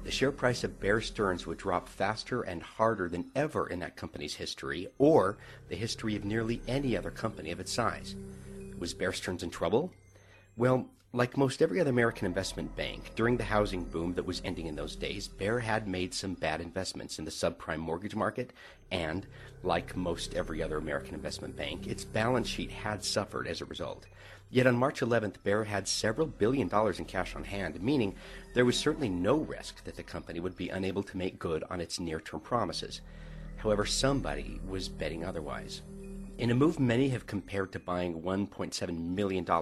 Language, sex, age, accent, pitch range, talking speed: English, male, 50-69, American, 90-120 Hz, 190 wpm